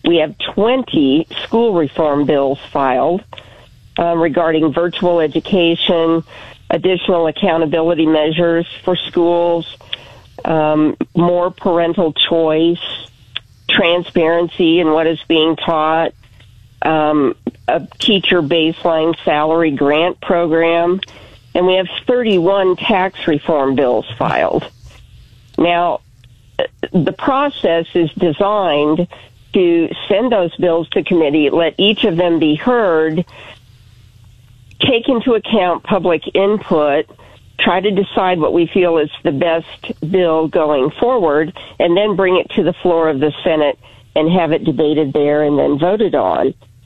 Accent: American